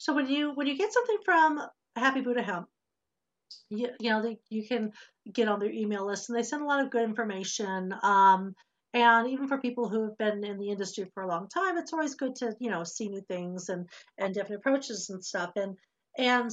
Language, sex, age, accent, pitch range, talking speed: English, female, 50-69, American, 205-260 Hz, 225 wpm